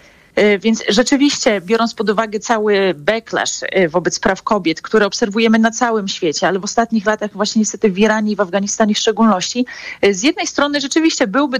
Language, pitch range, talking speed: Polish, 195-230 Hz, 170 wpm